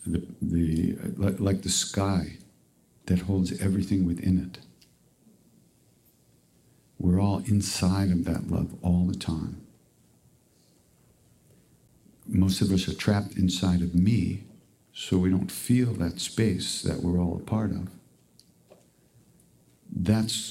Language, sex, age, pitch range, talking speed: English, male, 60-79, 85-100 Hz, 115 wpm